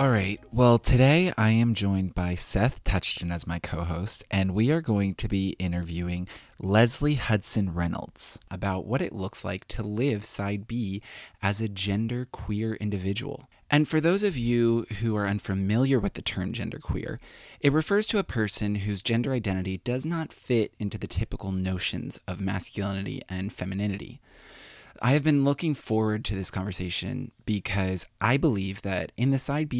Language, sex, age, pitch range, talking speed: English, male, 20-39, 95-135 Hz, 165 wpm